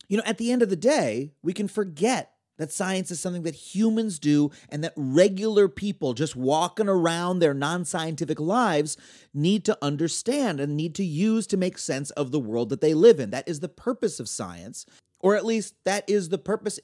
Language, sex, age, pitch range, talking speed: English, male, 30-49, 145-210 Hz, 205 wpm